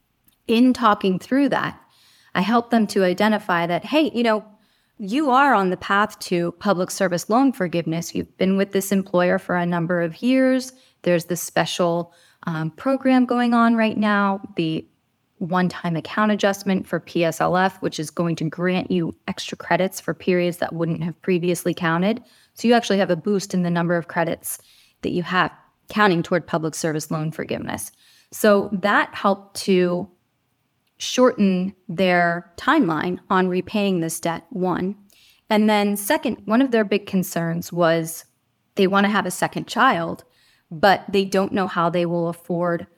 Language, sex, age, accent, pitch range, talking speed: English, female, 20-39, American, 175-210 Hz, 165 wpm